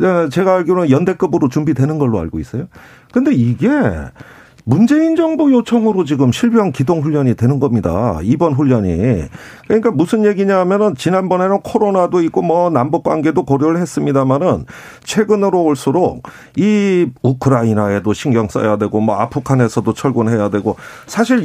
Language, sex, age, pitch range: Korean, male, 40-59, 140-215 Hz